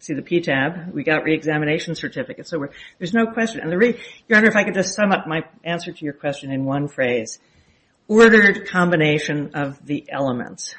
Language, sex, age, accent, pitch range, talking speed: English, female, 50-69, American, 145-175 Hz, 200 wpm